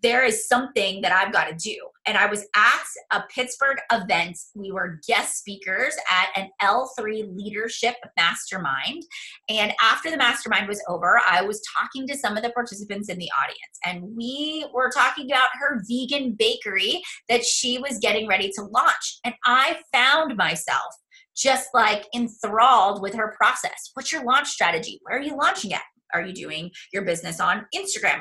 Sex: female